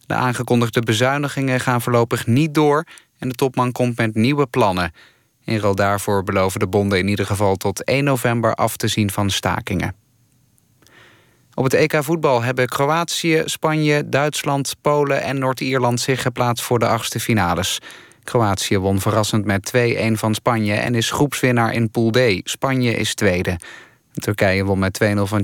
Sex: male